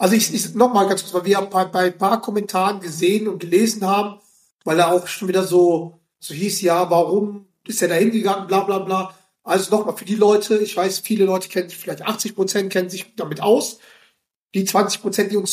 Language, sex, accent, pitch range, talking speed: German, male, German, 185-220 Hz, 215 wpm